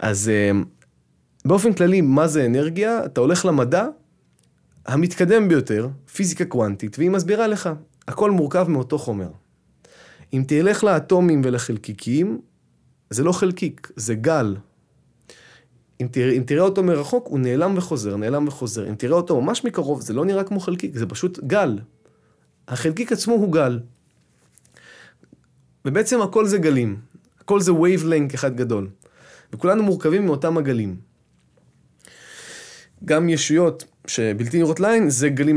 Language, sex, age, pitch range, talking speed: Hebrew, male, 20-39, 115-170 Hz, 130 wpm